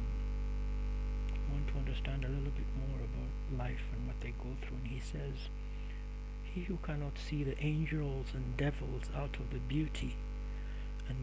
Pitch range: 115-135 Hz